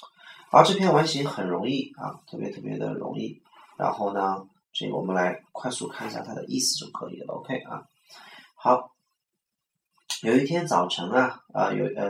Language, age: Chinese, 30-49